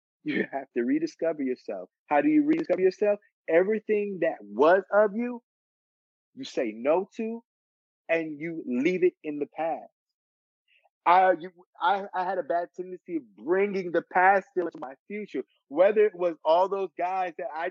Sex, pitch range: male, 150-210 Hz